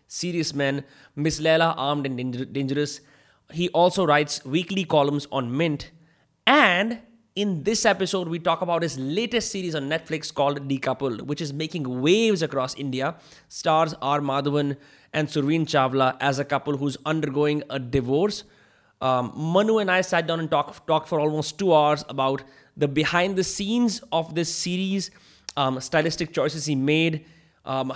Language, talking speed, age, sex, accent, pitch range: Hindi, 160 wpm, 20-39, male, native, 140-170 Hz